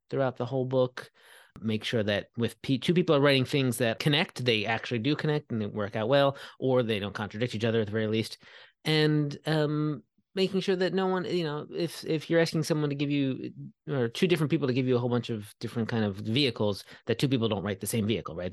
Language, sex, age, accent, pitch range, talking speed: English, male, 30-49, American, 110-145 Hz, 245 wpm